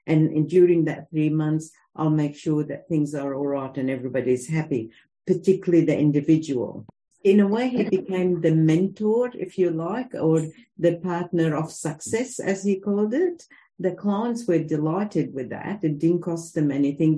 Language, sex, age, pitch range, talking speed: English, female, 50-69, 155-190 Hz, 170 wpm